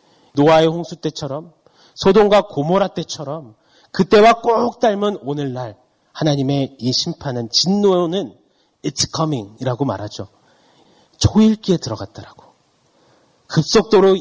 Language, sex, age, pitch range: Korean, male, 30-49, 110-155 Hz